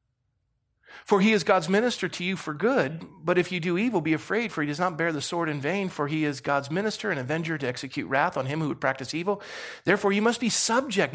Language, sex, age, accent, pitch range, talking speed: English, male, 40-59, American, 135-195 Hz, 250 wpm